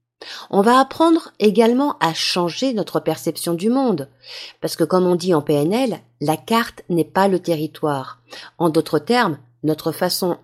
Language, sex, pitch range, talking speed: French, female, 150-225 Hz, 160 wpm